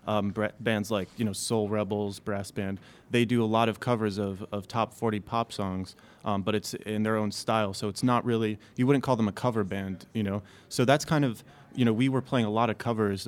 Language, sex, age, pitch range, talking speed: French, male, 20-39, 100-115 Hz, 245 wpm